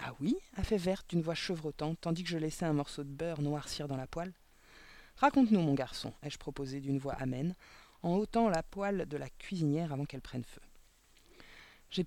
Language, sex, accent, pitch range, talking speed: French, female, French, 155-220 Hz, 200 wpm